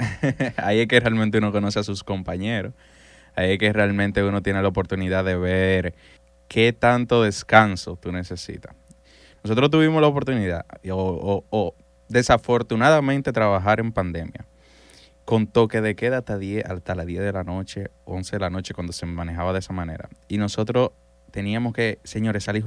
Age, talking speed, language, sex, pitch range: 20-39, 165 wpm, Spanish, male, 95-125 Hz